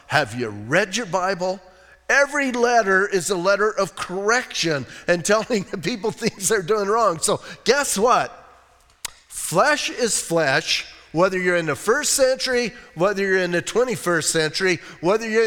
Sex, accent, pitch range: male, American, 180-235 Hz